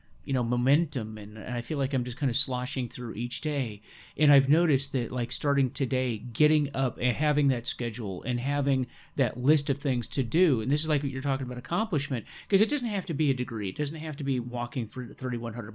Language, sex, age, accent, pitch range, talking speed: English, male, 30-49, American, 125-155 Hz, 230 wpm